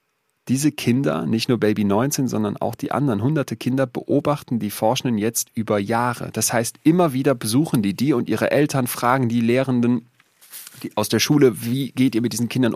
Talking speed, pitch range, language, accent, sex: 195 wpm, 110-135 Hz, German, German, male